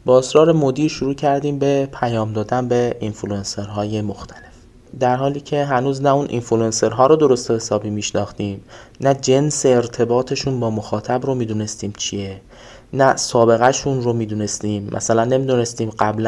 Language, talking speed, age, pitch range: Persian, 145 wpm, 20-39, 115-145 Hz